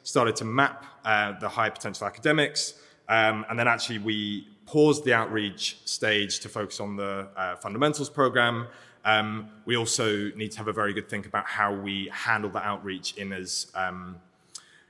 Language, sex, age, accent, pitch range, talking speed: English, male, 20-39, British, 100-120 Hz, 175 wpm